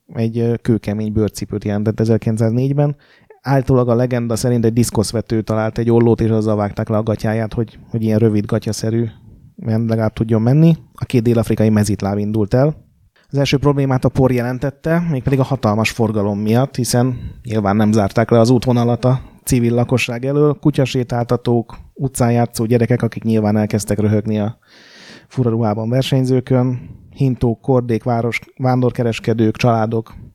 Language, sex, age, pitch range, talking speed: Hungarian, male, 30-49, 110-130 Hz, 145 wpm